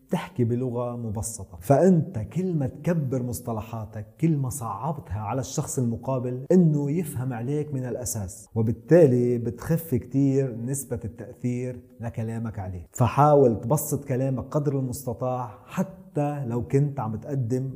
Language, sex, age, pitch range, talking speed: Arabic, male, 30-49, 115-135 Hz, 120 wpm